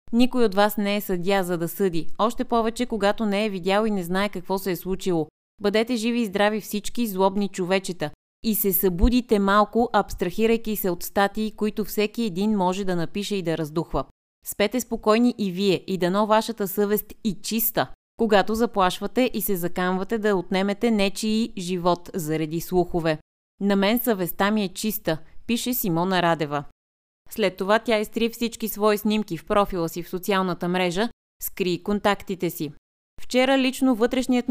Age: 30-49